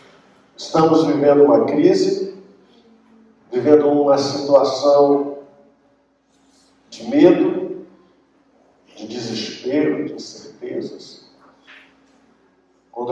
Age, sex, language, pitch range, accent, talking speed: 50-69, male, Portuguese, 115-145 Hz, Brazilian, 65 wpm